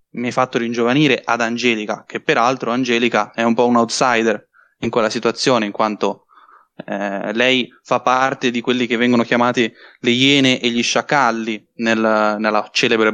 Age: 20-39